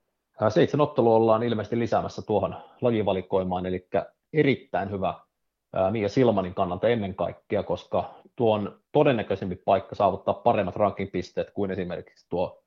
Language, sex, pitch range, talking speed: Finnish, male, 100-120 Hz, 125 wpm